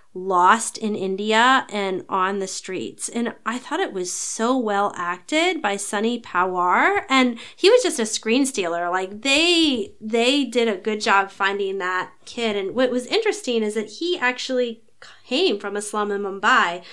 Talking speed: 175 wpm